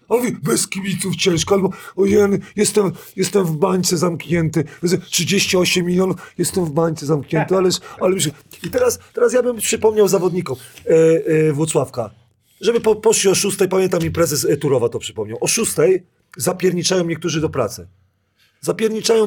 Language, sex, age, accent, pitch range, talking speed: Polish, male, 40-59, native, 145-185 Hz, 145 wpm